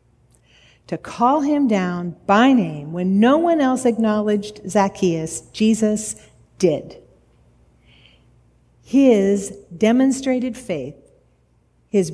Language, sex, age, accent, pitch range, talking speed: English, female, 50-69, American, 175-255 Hz, 90 wpm